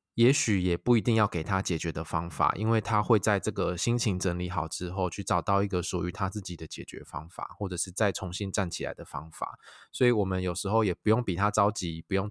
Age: 20-39